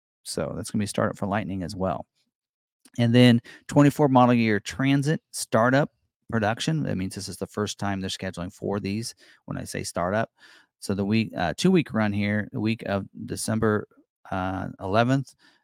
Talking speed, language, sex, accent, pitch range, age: 185 wpm, English, male, American, 95-125 Hz, 30-49